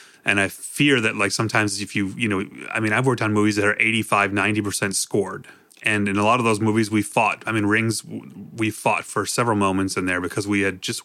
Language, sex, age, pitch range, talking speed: English, male, 30-49, 105-130 Hz, 245 wpm